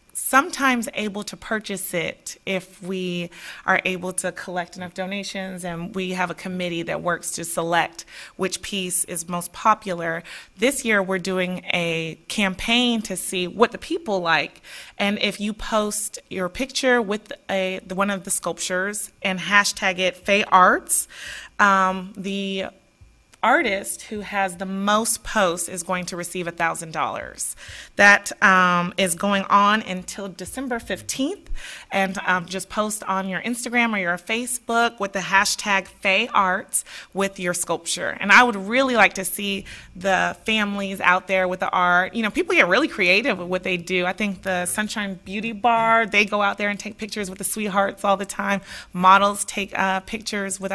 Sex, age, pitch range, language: female, 30-49, 185-210 Hz, English